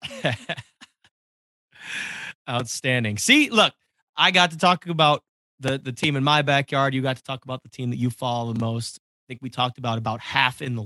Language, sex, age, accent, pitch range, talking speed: English, male, 30-49, American, 125-170 Hz, 195 wpm